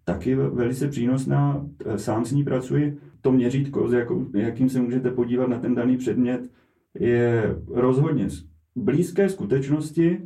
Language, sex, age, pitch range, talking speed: Czech, male, 30-49, 115-140 Hz, 130 wpm